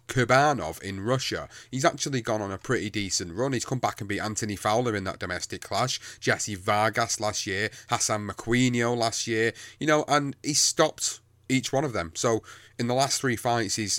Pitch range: 100-120 Hz